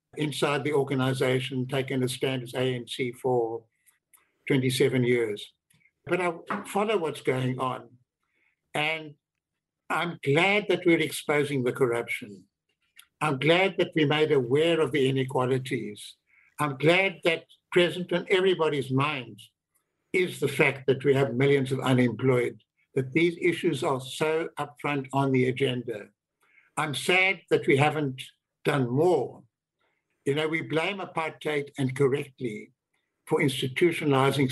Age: 60-79